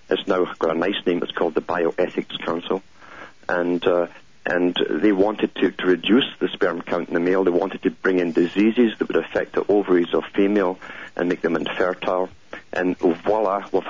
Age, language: 50-69, English